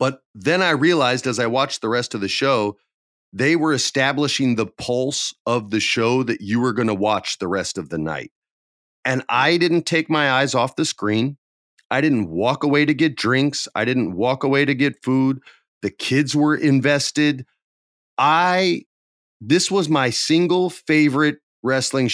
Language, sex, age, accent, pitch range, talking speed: English, male, 30-49, American, 115-150 Hz, 175 wpm